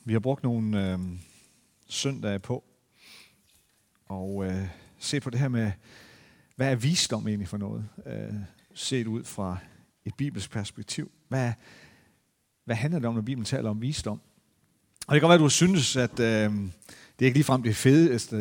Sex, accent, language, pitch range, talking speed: male, native, Danish, 105-130 Hz, 175 wpm